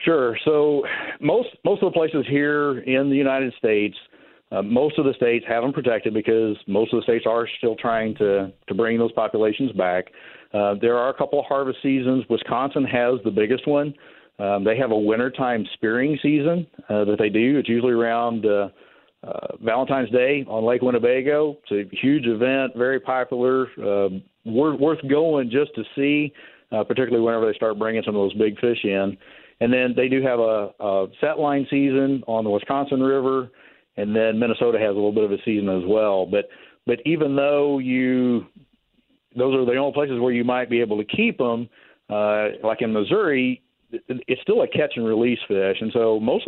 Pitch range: 110-135 Hz